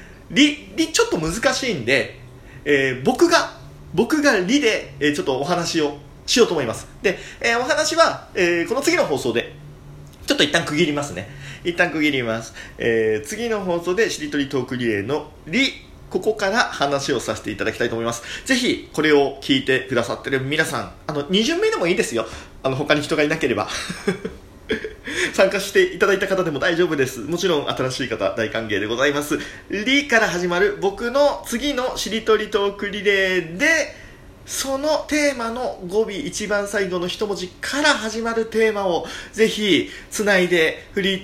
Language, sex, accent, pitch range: Japanese, male, native, 135-225 Hz